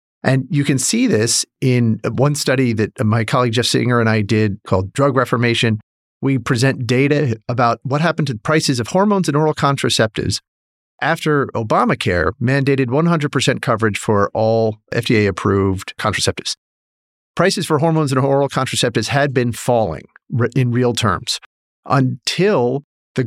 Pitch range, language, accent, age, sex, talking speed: 110-145 Hz, English, American, 40-59, male, 145 wpm